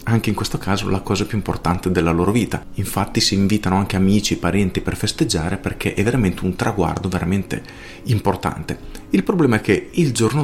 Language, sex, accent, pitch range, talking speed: Italian, male, native, 95-120 Hz, 185 wpm